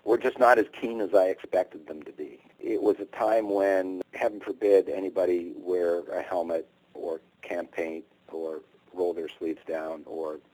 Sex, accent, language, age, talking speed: male, American, English, 40-59, 170 wpm